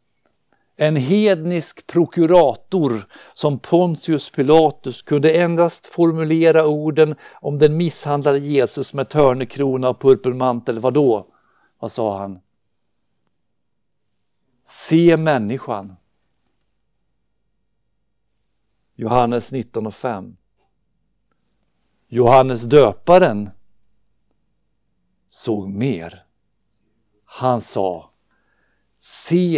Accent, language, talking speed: native, Swedish, 70 wpm